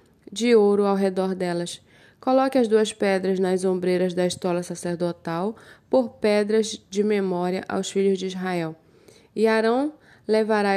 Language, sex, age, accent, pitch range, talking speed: Portuguese, female, 20-39, Brazilian, 185-220 Hz, 140 wpm